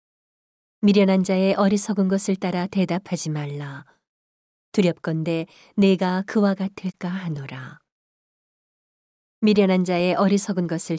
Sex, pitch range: female, 160-200 Hz